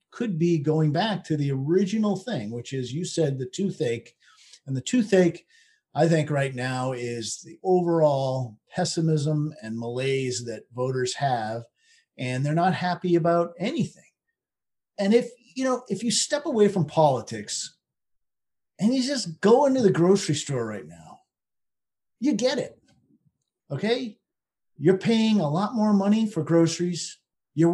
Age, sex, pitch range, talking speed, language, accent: 50-69, male, 155-200 Hz, 150 wpm, English, American